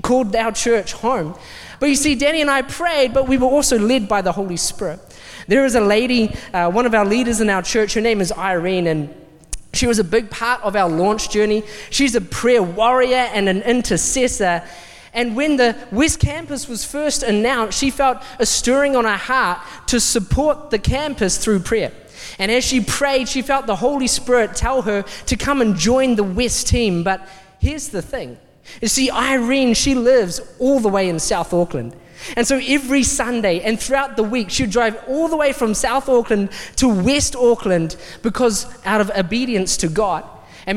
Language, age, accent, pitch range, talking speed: English, 20-39, Australian, 205-260 Hz, 195 wpm